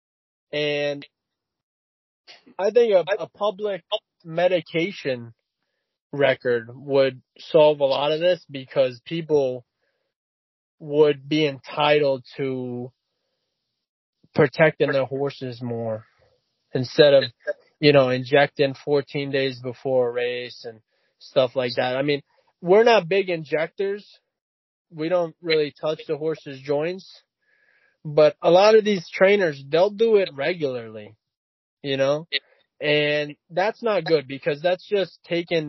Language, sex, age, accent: English, male, 20-39, American